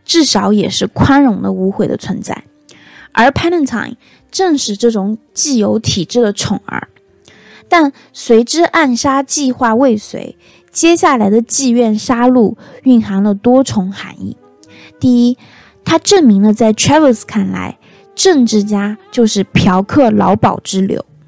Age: 20-39